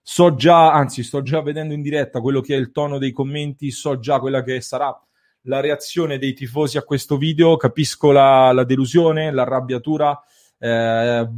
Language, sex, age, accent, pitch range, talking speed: English, male, 30-49, Italian, 125-150 Hz, 175 wpm